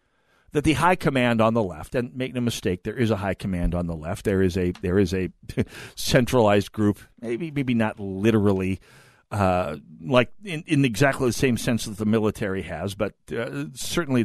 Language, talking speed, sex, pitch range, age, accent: English, 195 wpm, male, 95-130 Hz, 50-69, American